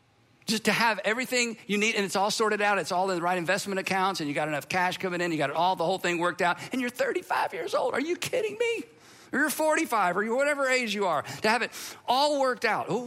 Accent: American